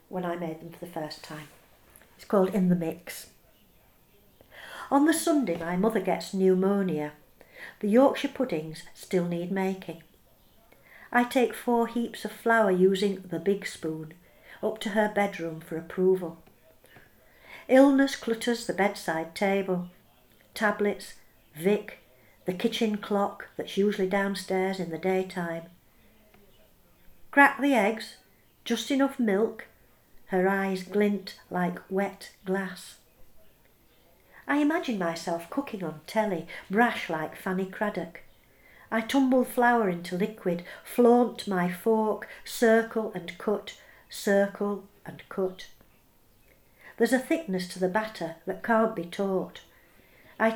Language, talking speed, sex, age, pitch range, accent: English, 125 wpm, female, 60-79, 175-220 Hz, British